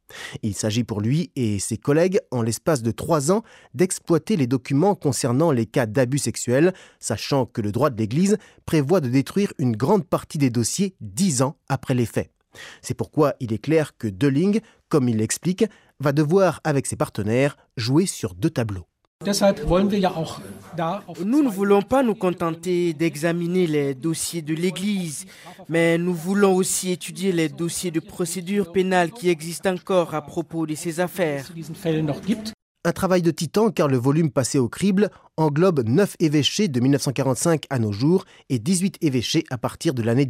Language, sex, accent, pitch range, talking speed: French, male, French, 125-180 Hz, 165 wpm